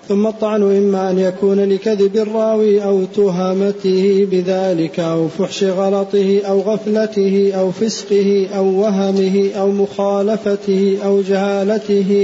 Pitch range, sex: 195-210 Hz, male